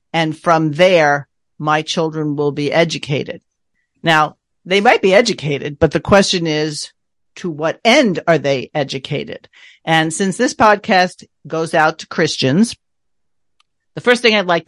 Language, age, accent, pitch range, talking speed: English, 50-69, American, 145-180 Hz, 145 wpm